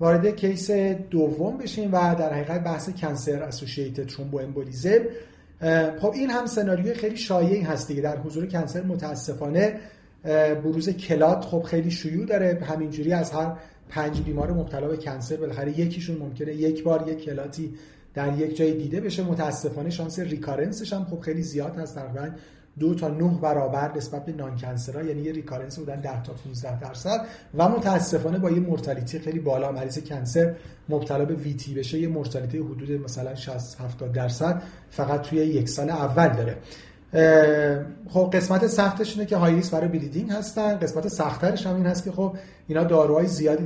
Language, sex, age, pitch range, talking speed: Persian, male, 40-59, 145-180 Hz, 160 wpm